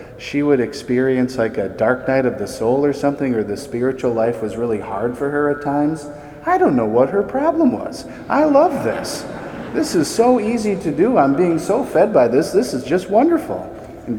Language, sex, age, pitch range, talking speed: English, male, 40-59, 115-145 Hz, 210 wpm